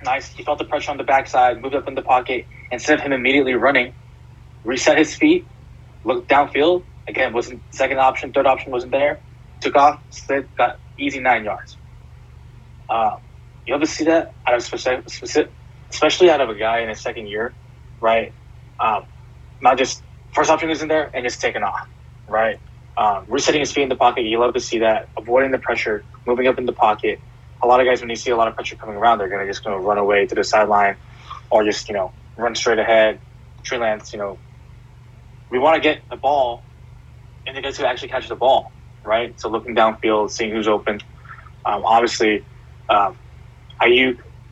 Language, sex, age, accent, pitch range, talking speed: English, male, 20-39, American, 115-135 Hz, 200 wpm